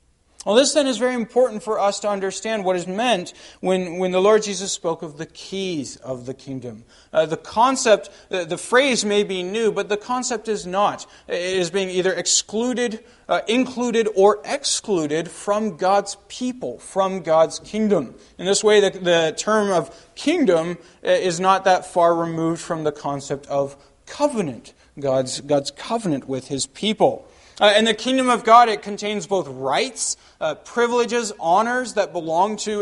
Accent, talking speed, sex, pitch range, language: American, 170 wpm, male, 170-215 Hz, English